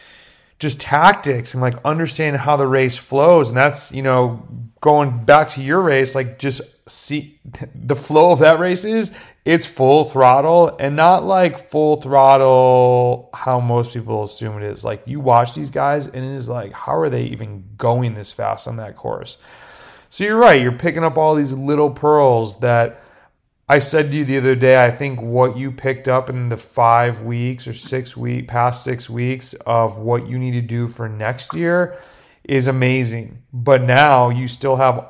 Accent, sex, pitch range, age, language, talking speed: American, male, 120-140 Hz, 30-49, English, 190 wpm